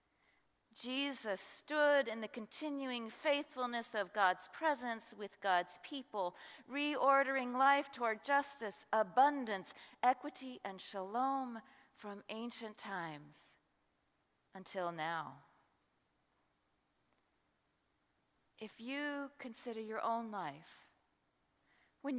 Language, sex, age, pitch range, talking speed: English, female, 40-59, 210-260 Hz, 85 wpm